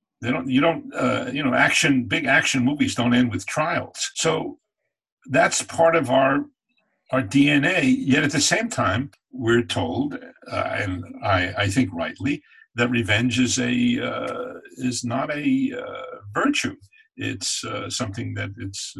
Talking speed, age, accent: 160 wpm, 50-69, American